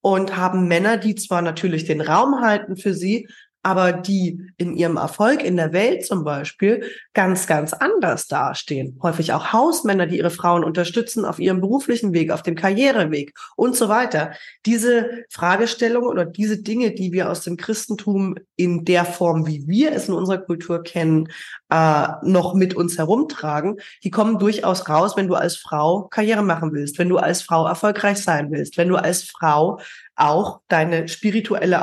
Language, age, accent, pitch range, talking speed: German, 20-39, German, 170-200 Hz, 175 wpm